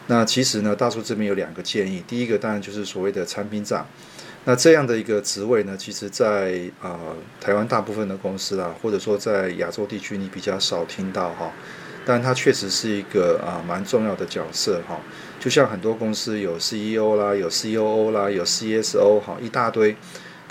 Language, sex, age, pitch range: Chinese, male, 30-49, 100-115 Hz